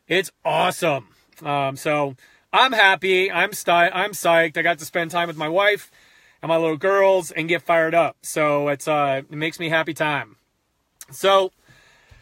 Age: 30-49